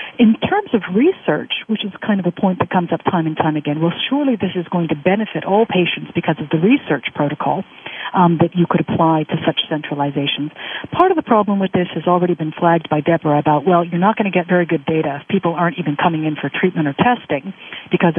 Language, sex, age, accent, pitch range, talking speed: English, female, 50-69, American, 165-220 Hz, 240 wpm